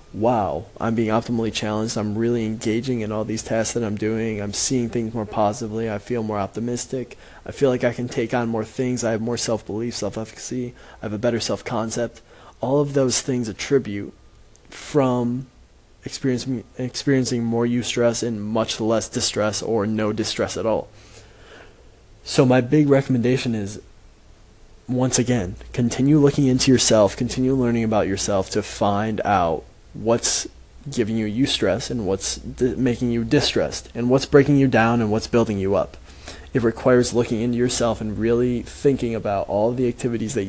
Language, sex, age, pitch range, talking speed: English, male, 20-39, 105-125 Hz, 165 wpm